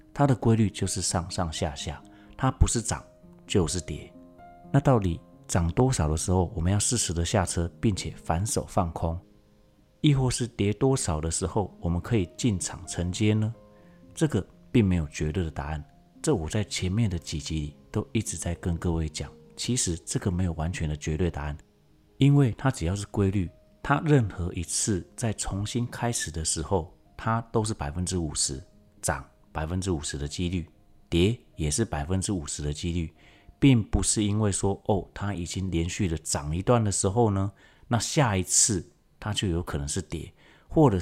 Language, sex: Chinese, male